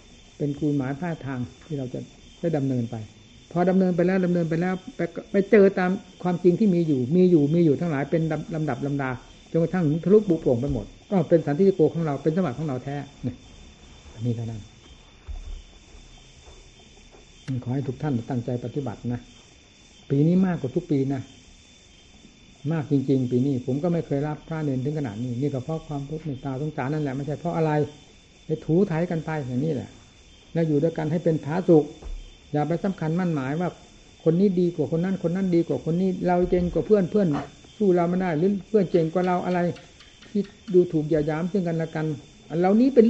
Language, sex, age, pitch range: Thai, male, 60-79, 130-180 Hz